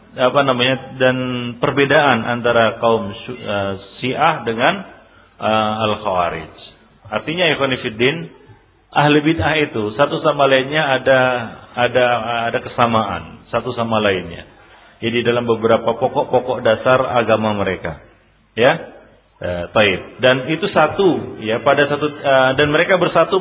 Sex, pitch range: male, 115-155 Hz